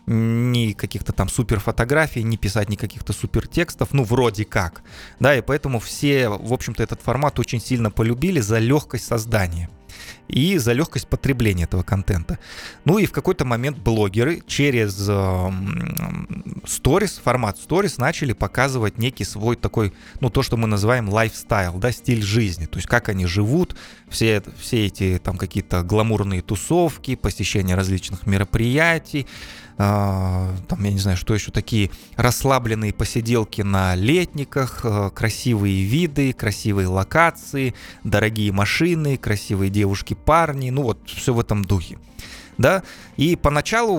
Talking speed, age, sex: 135 wpm, 20-39, male